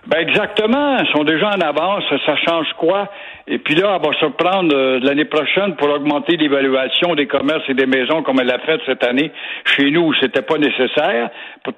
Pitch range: 130-170 Hz